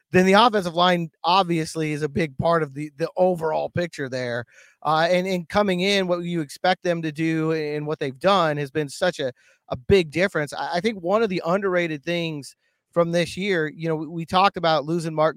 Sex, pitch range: male, 155-185 Hz